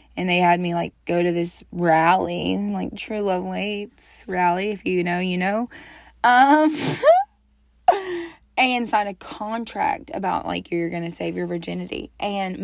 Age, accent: 20-39, American